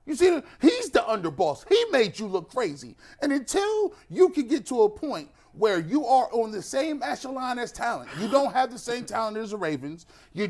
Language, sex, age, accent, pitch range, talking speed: English, male, 30-49, American, 170-250 Hz, 210 wpm